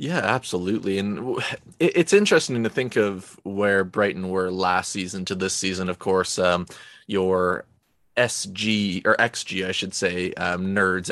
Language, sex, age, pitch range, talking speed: English, male, 20-39, 95-105 Hz, 150 wpm